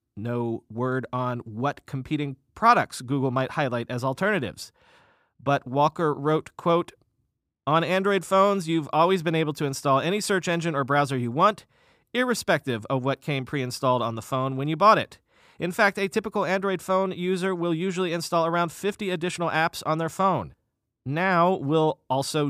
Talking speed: 170 wpm